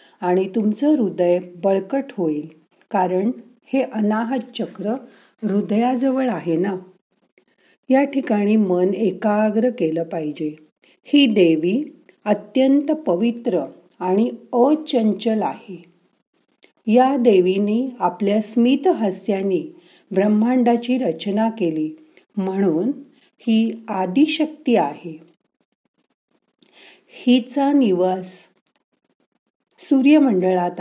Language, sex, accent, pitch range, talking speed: Marathi, female, native, 180-245 Hz, 80 wpm